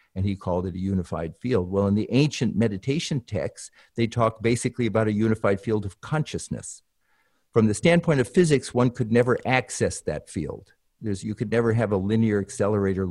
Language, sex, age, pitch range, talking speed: English, male, 50-69, 95-115 Hz, 190 wpm